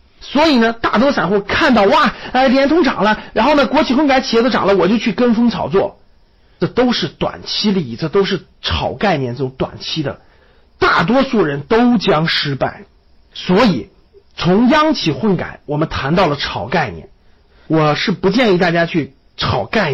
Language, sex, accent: Chinese, male, native